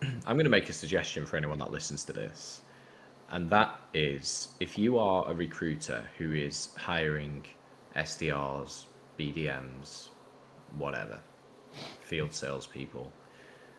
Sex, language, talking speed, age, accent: male, English, 120 wpm, 20-39, British